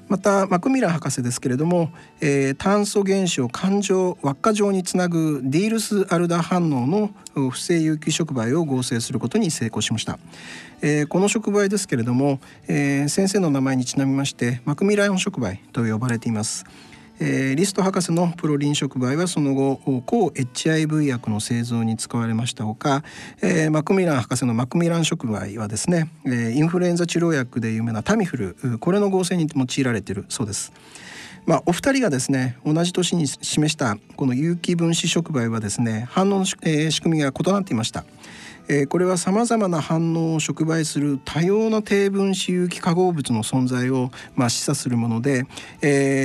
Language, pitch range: Japanese, 130-175 Hz